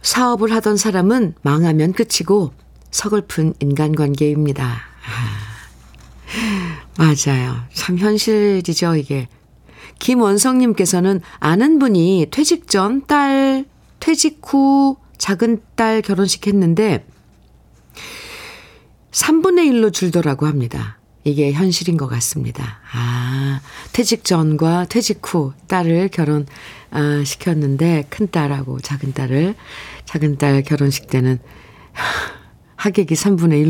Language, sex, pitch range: Korean, female, 140-200 Hz